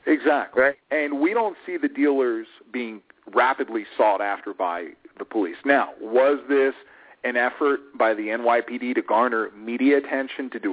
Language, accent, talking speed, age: English, American, 155 wpm, 40-59